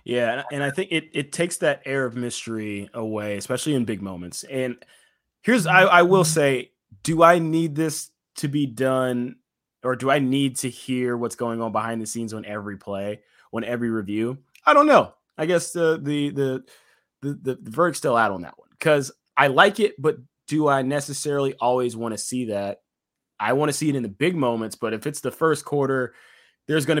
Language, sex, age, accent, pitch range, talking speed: English, male, 20-39, American, 115-145 Hz, 205 wpm